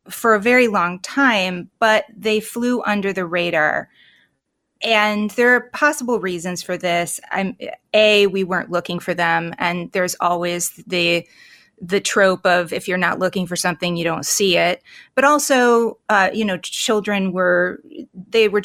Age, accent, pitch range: 30-49, American, 180-215 Hz